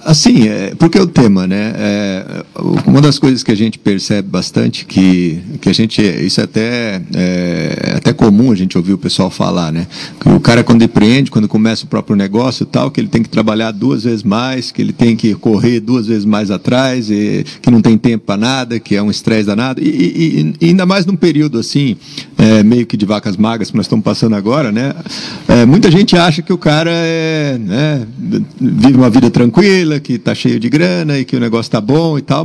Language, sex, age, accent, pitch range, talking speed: Portuguese, male, 50-69, Brazilian, 110-155 Hz, 225 wpm